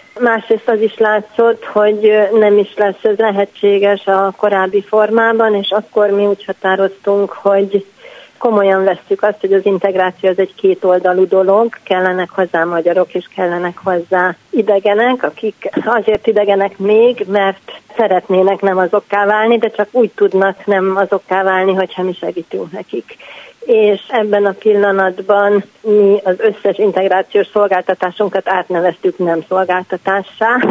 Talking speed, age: 135 wpm, 40-59